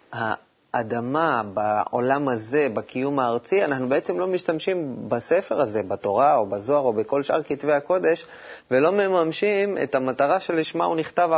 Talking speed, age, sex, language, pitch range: 135 wpm, 30-49, male, Hebrew, 110-140 Hz